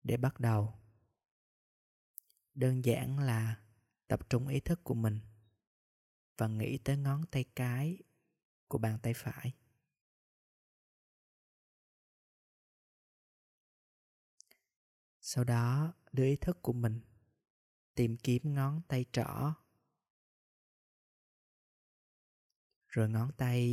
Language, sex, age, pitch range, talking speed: Vietnamese, male, 20-39, 115-135 Hz, 95 wpm